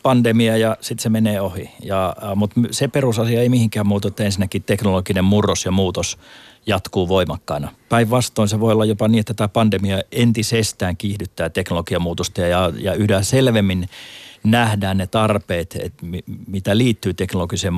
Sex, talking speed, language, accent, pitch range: male, 145 wpm, Finnish, native, 95-115 Hz